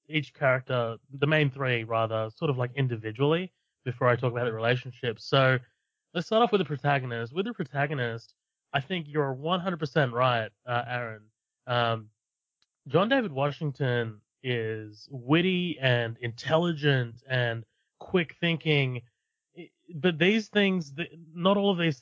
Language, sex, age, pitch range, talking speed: English, male, 30-49, 120-155 Hz, 140 wpm